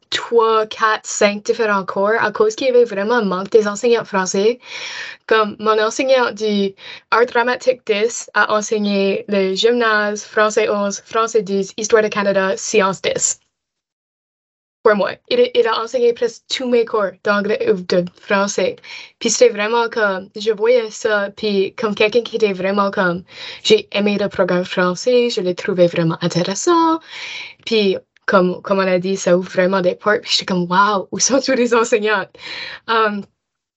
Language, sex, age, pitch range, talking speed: French, female, 10-29, 195-240 Hz, 165 wpm